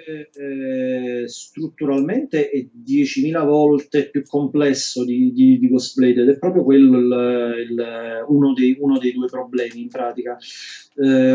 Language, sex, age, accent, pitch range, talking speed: Italian, male, 30-49, native, 125-150 Hz, 110 wpm